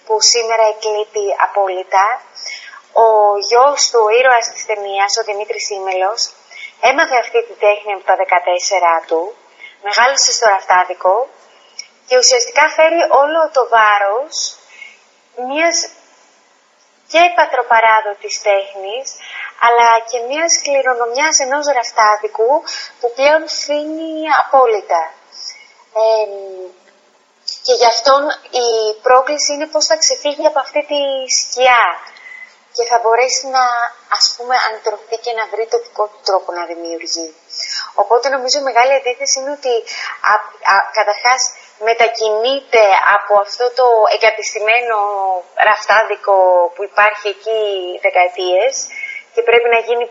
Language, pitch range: Greek, 205-275 Hz